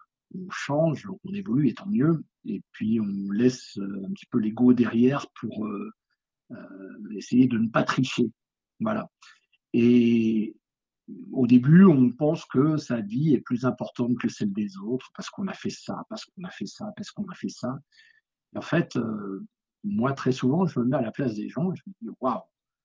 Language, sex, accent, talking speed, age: French, male, French, 195 wpm, 60-79